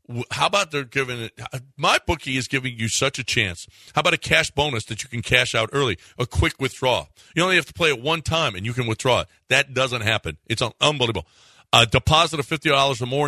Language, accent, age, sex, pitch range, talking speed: English, American, 40-59, male, 115-145 Hz, 235 wpm